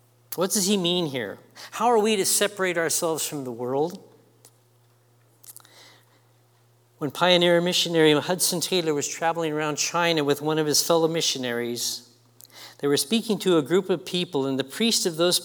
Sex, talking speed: male, 165 wpm